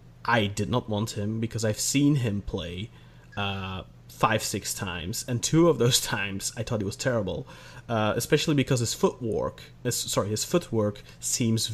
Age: 30-49